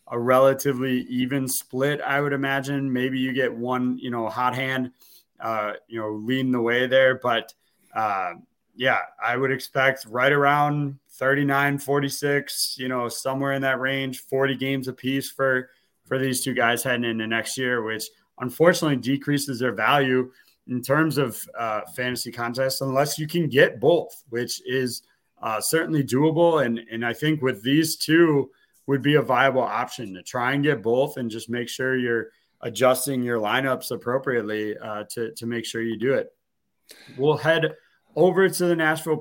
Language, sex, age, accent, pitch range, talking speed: English, male, 30-49, American, 125-150 Hz, 170 wpm